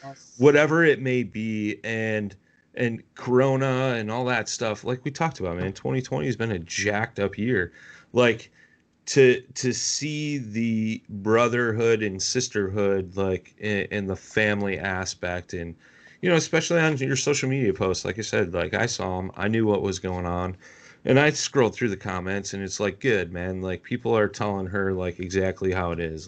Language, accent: English, American